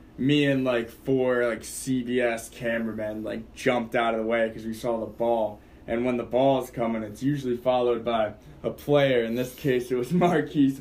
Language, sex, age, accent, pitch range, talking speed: English, male, 20-39, American, 115-130 Hz, 195 wpm